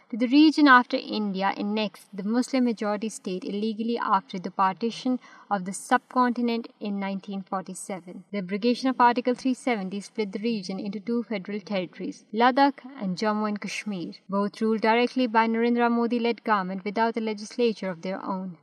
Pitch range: 200-245 Hz